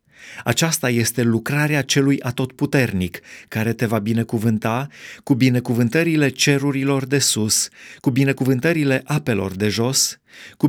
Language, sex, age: Romanian, male, 30-49